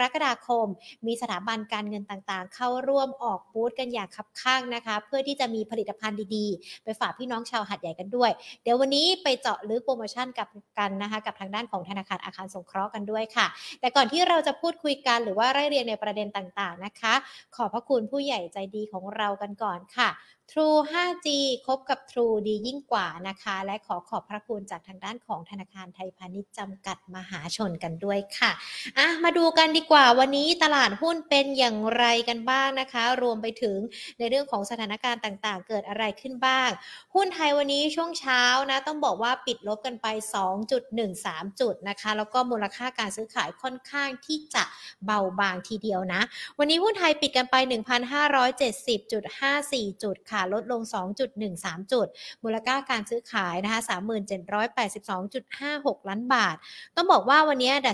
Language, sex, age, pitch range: Thai, female, 60-79, 205-265 Hz